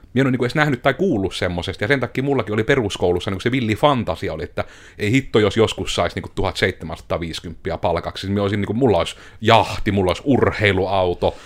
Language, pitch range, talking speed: Finnish, 90-120 Hz, 190 wpm